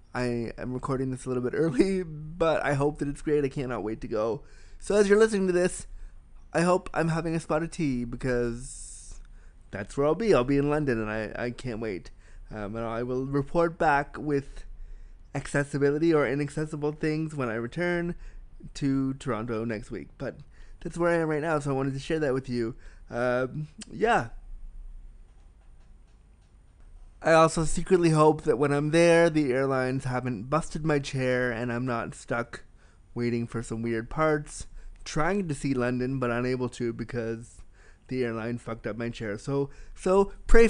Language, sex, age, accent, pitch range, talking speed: English, male, 20-39, American, 115-155 Hz, 180 wpm